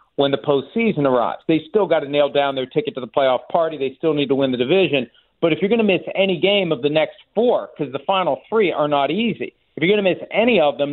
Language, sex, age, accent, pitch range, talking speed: English, male, 50-69, American, 145-180 Hz, 275 wpm